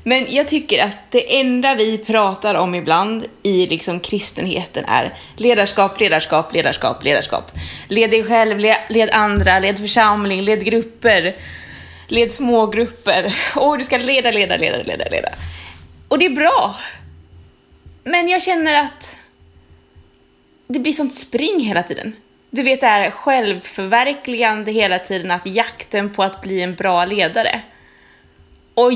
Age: 20-39